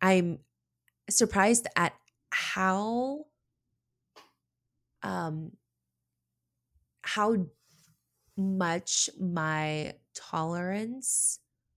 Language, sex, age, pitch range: English, female, 20-39, 145-195 Hz